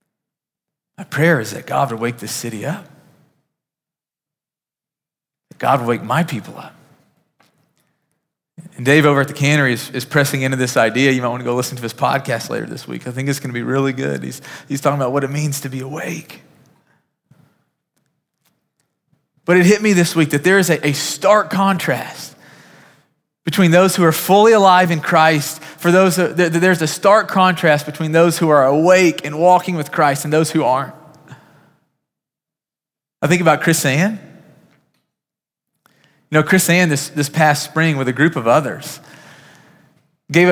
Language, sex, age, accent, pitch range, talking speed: English, male, 30-49, American, 140-170 Hz, 175 wpm